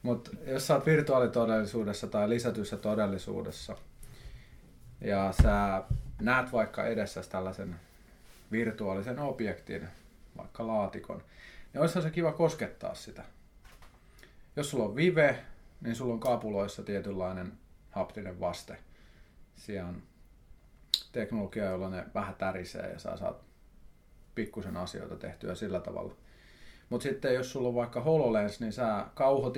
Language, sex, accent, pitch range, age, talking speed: Finnish, male, native, 95-125 Hz, 30-49, 120 wpm